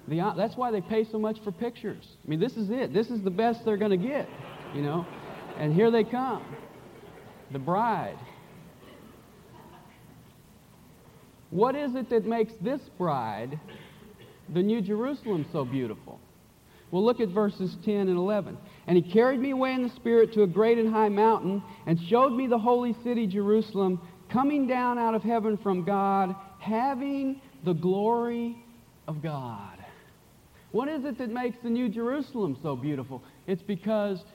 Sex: male